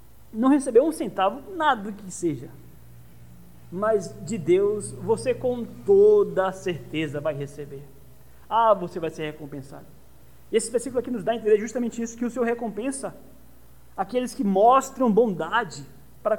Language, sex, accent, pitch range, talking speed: Portuguese, male, Brazilian, 135-200 Hz, 145 wpm